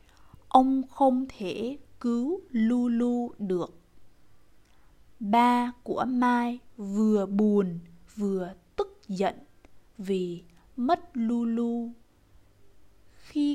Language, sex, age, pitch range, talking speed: Vietnamese, female, 20-39, 190-255 Hz, 80 wpm